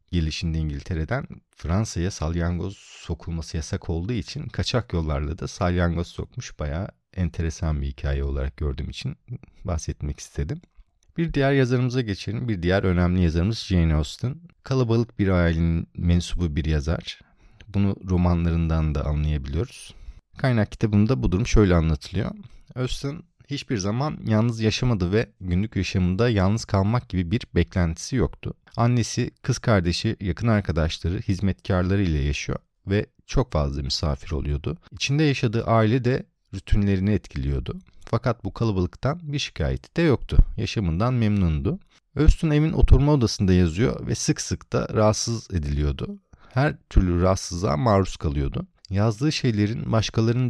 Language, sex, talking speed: Turkish, male, 130 wpm